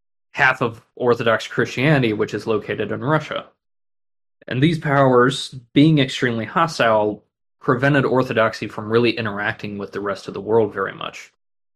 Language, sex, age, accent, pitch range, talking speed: English, male, 20-39, American, 105-135 Hz, 145 wpm